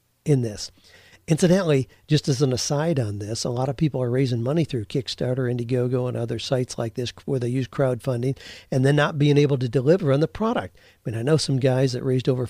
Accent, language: American, English